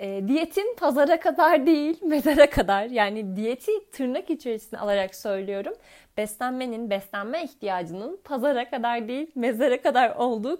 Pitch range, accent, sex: 210-275 Hz, native, female